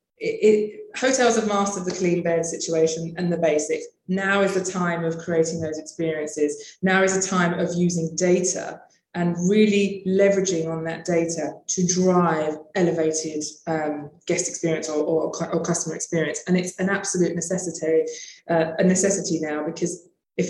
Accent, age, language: British, 20-39, English